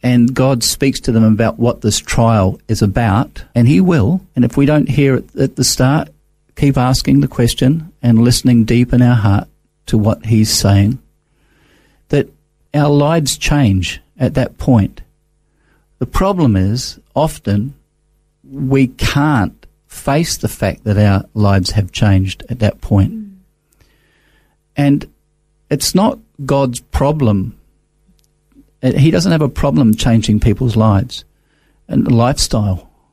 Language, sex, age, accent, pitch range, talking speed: English, male, 50-69, Australian, 105-145 Hz, 140 wpm